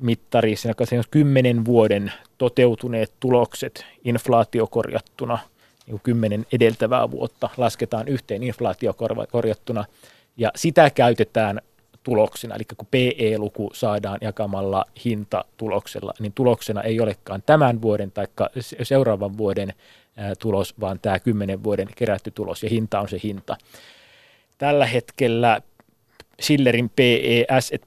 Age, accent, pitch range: 30-49, native, 110-125 Hz